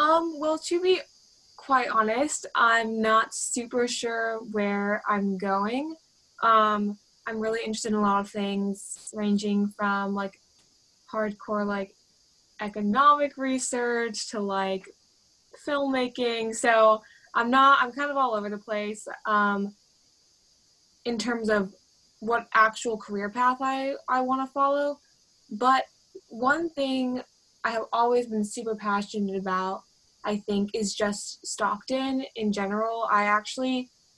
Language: English